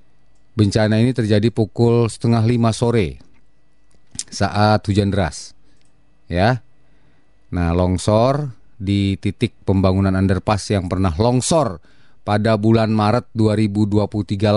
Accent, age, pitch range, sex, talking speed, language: native, 30-49, 95-110 Hz, male, 100 wpm, Indonesian